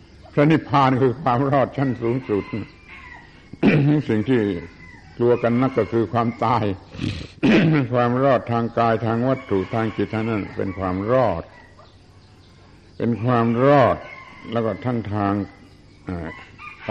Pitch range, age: 95-115 Hz, 70-89